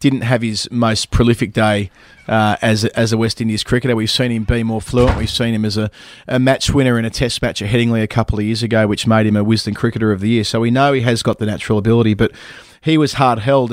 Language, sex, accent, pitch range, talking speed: English, male, Australian, 110-125 Hz, 265 wpm